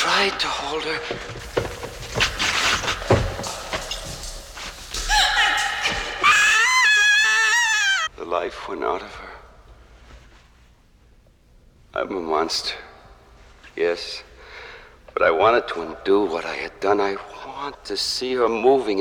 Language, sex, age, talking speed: English, male, 60-79, 95 wpm